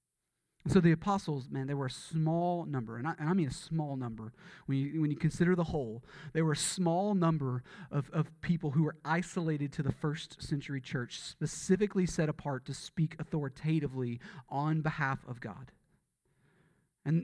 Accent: American